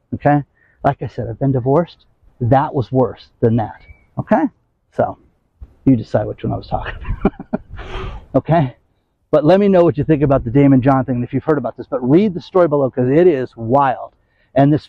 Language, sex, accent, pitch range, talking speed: English, male, American, 125-165 Hz, 205 wpm